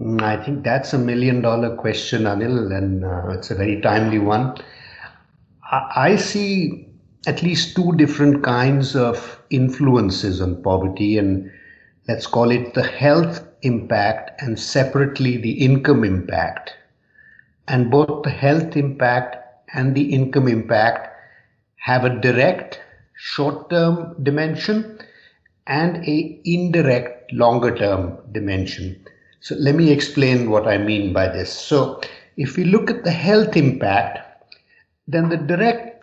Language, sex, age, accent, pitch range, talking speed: English, male, 50-69, Indian, 110-150 Hz, 135 wpm